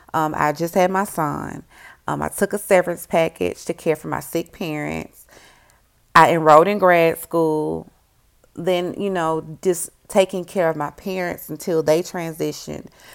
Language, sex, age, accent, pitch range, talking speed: English, female, 30-49, American, 155-190 Hz, 160 wpm